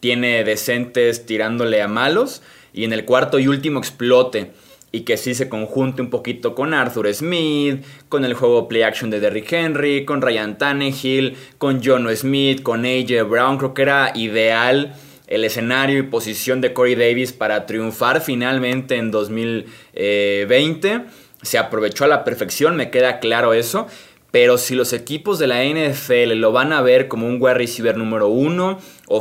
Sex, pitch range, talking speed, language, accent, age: male, 115-135 Hz, 170 wpm, Spanish, Mexican, 20-39